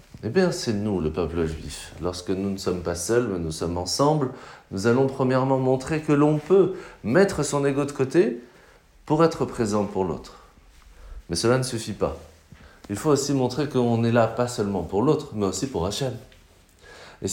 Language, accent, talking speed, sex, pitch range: French, French, 190 wpm, male, 95-145 Hz